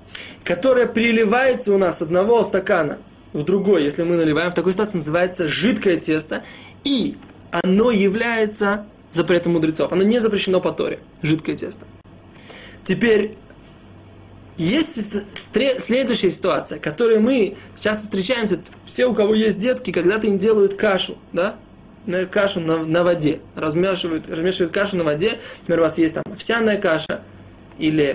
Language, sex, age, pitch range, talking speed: Russian, male, 20-39, 165-220 Hz, 145 wpm